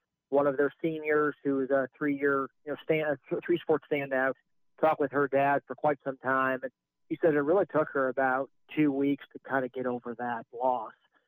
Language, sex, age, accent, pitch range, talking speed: English, male, 40-59, American, 135-155 Hz, 200 wpm